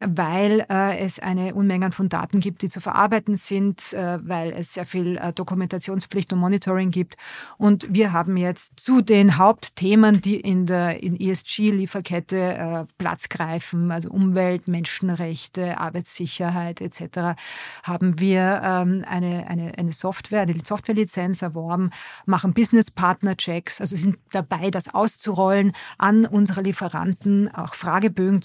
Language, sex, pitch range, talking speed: German, female, 175-200 Hz, 135 wpm